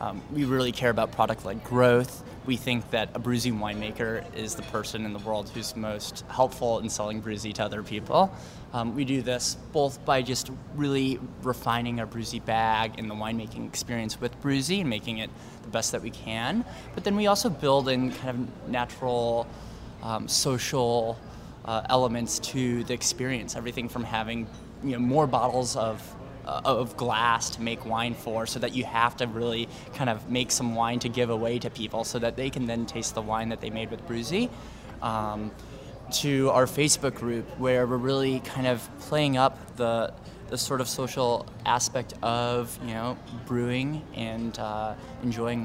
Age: 20-39